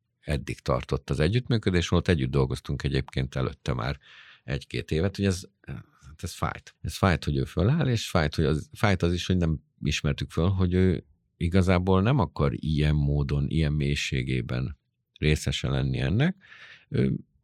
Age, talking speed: 50-69, 155 wpm